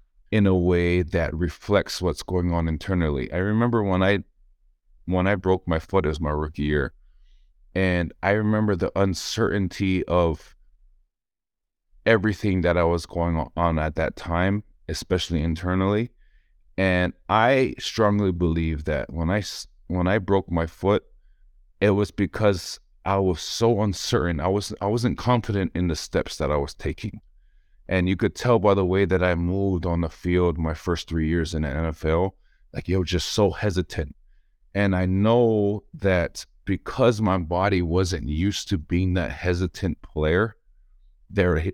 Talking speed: 160 wpm